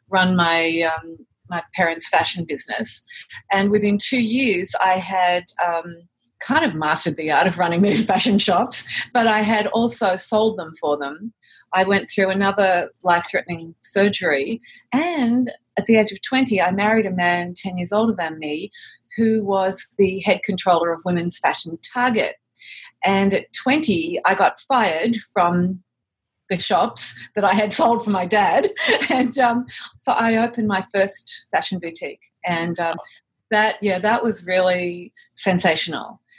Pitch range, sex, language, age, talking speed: 170-215 Hz, female, English, 30-49, 155 wpm